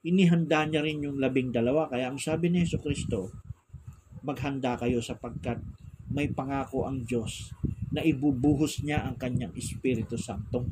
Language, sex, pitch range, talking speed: Filipino, male, 115-140 Hz, 145 wpm